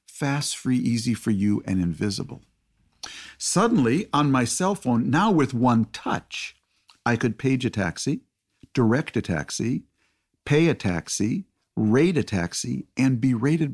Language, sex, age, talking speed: English, male, 50-69, 145 wpm